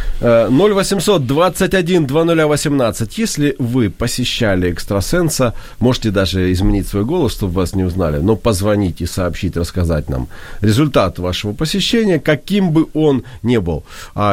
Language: Ukrainian